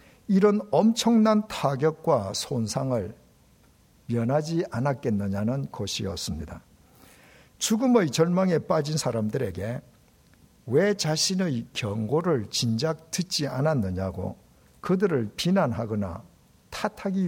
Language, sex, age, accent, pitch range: Korean, male, 60-79, native, 115-185 Hz